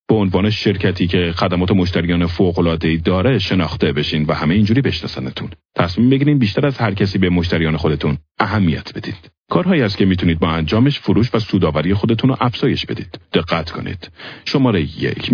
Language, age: Persian, 40-59